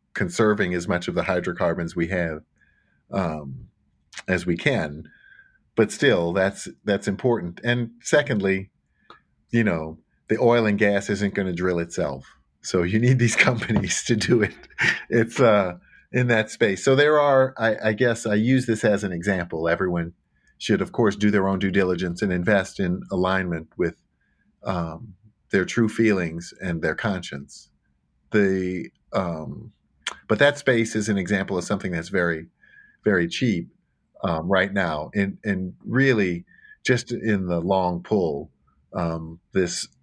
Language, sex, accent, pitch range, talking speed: English, male, American, 85-110 Hz, 155 wpm